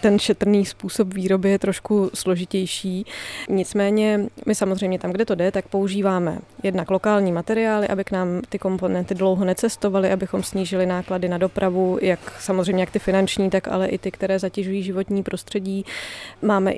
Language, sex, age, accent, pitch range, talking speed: Czech, female, 20-39, native, 185-205 Hz, 160 wpm